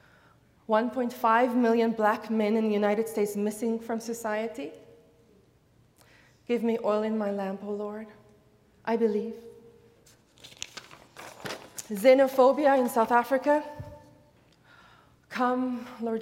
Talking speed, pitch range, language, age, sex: 105 wpm, 210-255 Hz, English, 20-39, female